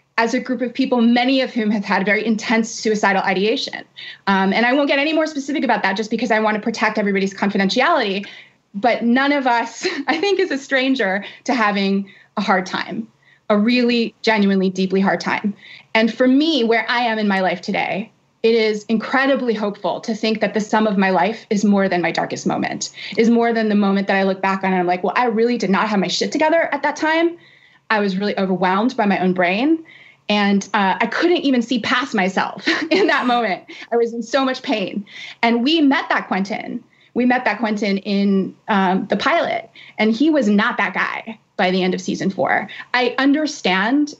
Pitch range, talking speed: 200-260 Hz, 210 wpm